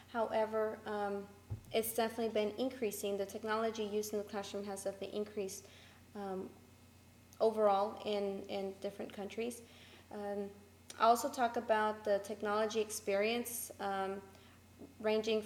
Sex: female